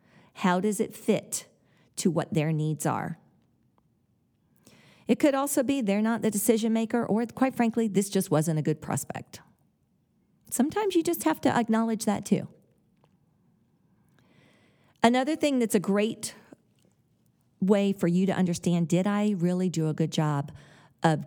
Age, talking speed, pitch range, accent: 40-59, 150 wpm, 160-220 Hz, American